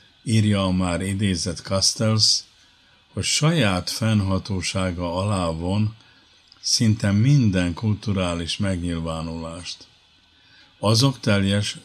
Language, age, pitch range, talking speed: Hungarian, 50-69, 90-110 Hz, 80 wpm